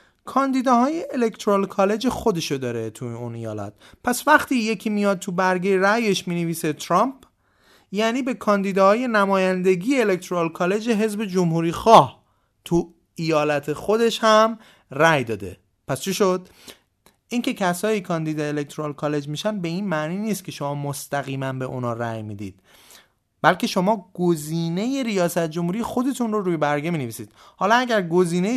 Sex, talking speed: male, 135 wpm